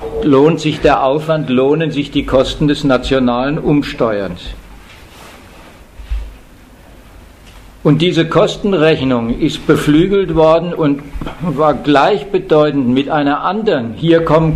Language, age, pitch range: German, 50-69, 140-165 Hz